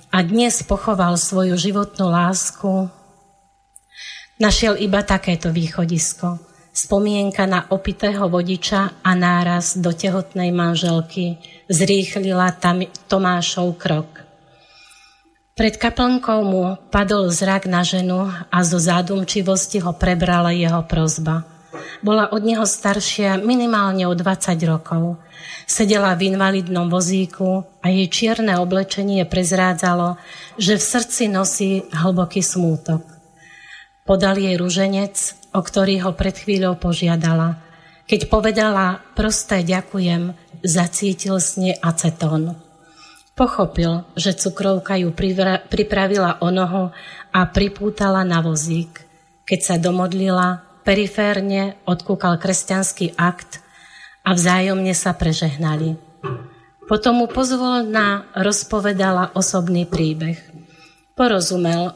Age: 30-49